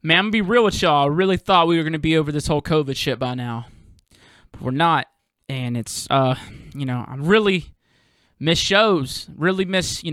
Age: 20-39